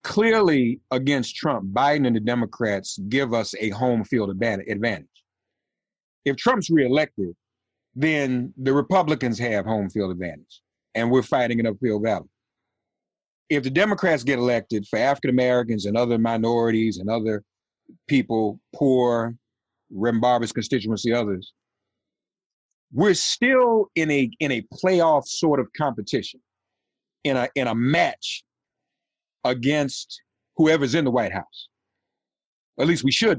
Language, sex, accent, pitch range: English, male, American, 110-145 Hz